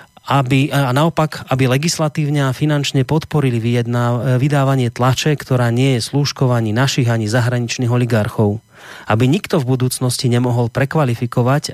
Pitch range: 110-140 Hz